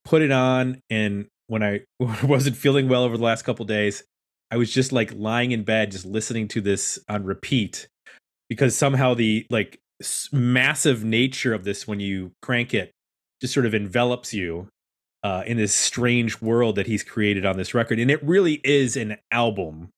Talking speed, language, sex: 185 wpm, English, male